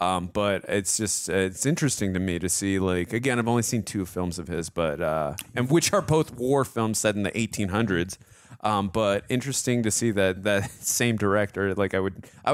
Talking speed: 215 wpm